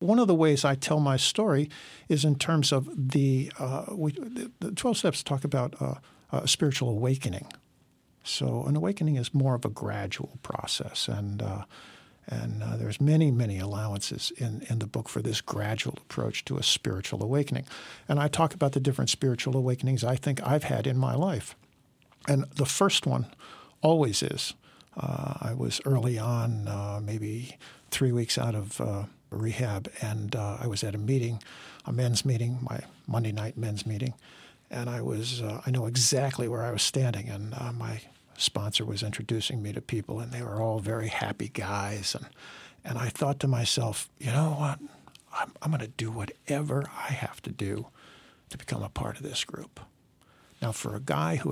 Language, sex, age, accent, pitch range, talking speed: English, male, 50-69, American, 110-140 Hz, 185 wpm